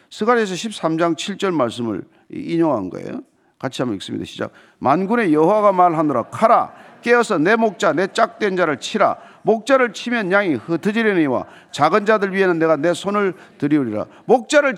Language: Korean